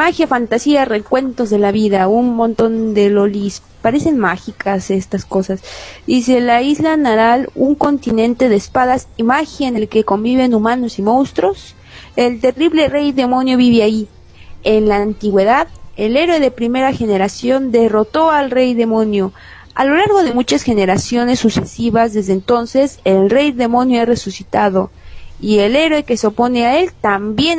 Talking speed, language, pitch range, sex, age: 155 wpm, Spanish, 215-275 Hz, female, 30-49